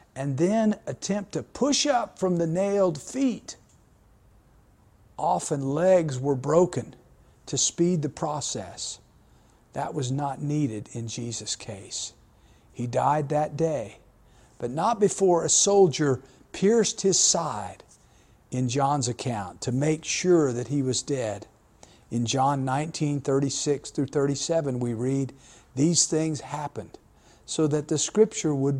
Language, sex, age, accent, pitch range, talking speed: English, male, 50-69, American, 120-165 Hz, 135 wpm